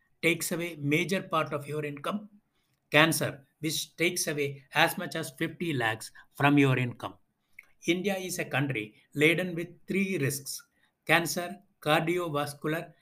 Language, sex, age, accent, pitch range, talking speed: English, male, 60-79, Indian, 140-165 Hz, 135 wpm